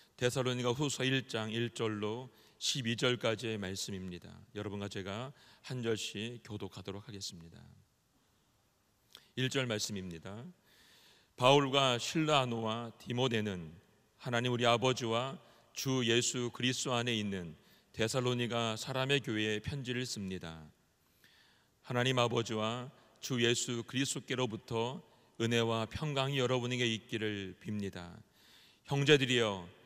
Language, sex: Korean, male